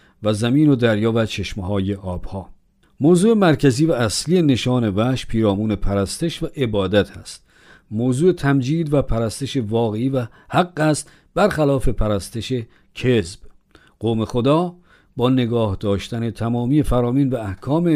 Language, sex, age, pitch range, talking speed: Persian, male, 50-69, 105-145 Hz, 125 wpm